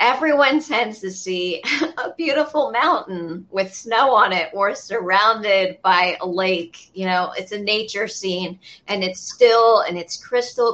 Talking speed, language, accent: 155 wpm, English, American